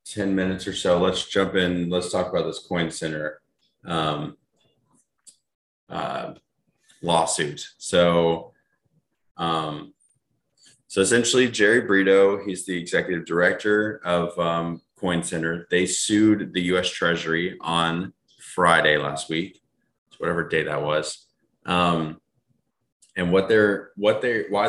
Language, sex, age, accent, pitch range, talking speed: English, male, 20-39, American, 85-105 Hz, 120 wpm